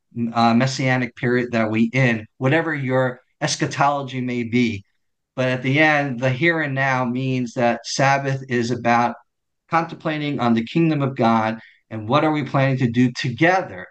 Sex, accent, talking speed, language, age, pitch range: male, American, 165 wpm, English, 50-69, 120-150 Hz